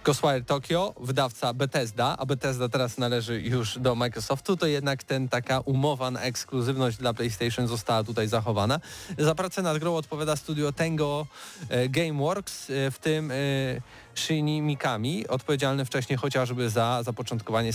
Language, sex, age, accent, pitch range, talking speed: Polish, male, 20-39, native, 115-145 Hz, 135 wpm